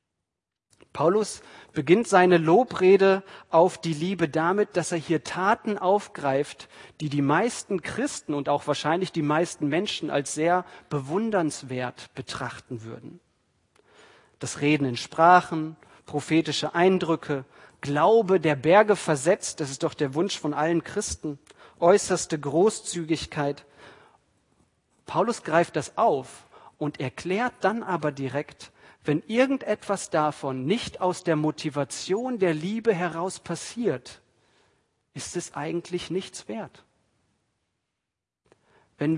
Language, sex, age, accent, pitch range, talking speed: German, male, 40-59, German, 150-195 Hz, 115 wpm